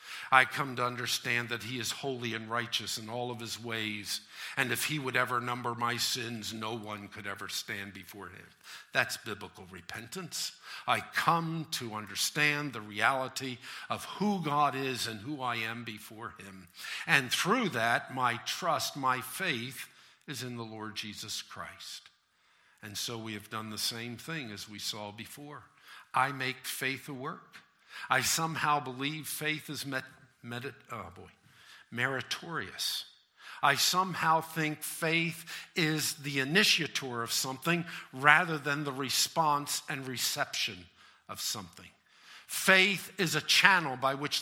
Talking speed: 150 wpm